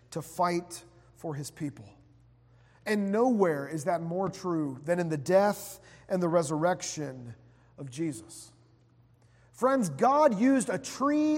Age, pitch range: 40-59, 145-245 Hz